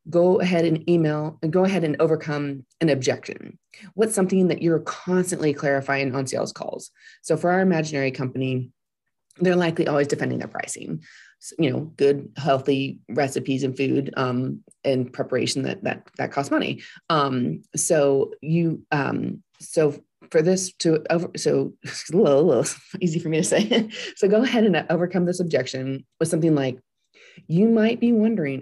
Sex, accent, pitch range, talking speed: female, American, 140-175 Hz, 170 wpm